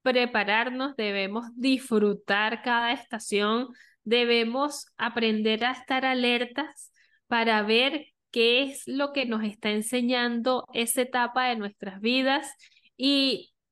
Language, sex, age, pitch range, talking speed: Spanish, female, 10-29, 220-265 Hz, 110 wpm